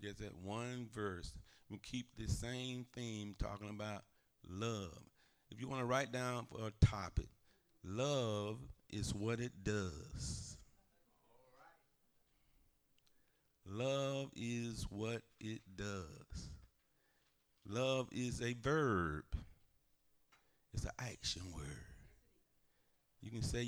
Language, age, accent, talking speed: English, 50-69, American, 105 wpm